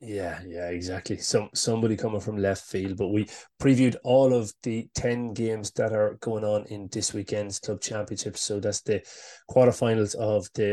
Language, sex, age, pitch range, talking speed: English, male, 20-39, 100-120 Hz, 180 wpm